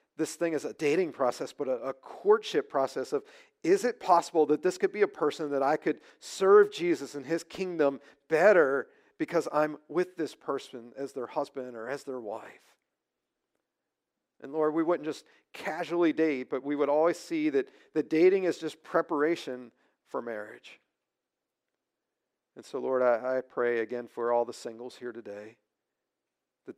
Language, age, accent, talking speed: English, 40-59, American, 170 wpm